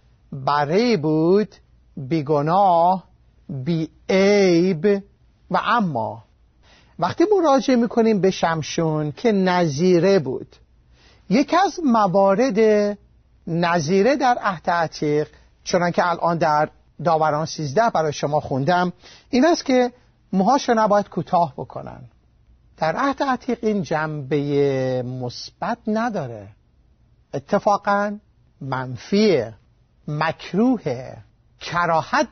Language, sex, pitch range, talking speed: Persian, male, 145-205 Hz, 95 wpm